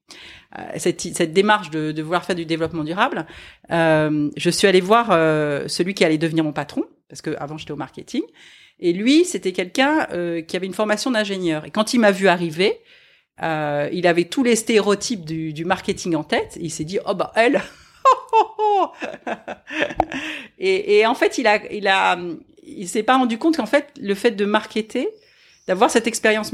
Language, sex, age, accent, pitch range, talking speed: French, female, 40-59, French, 170-245 Hz, 190 wpm